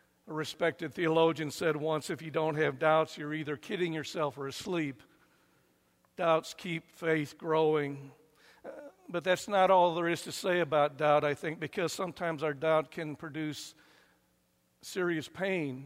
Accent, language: American, English